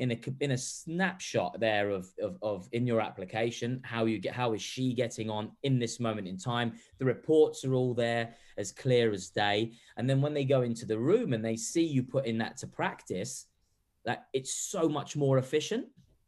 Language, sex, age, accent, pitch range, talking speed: English, male, 20-39, British, 100-125 Hz, 205 wpm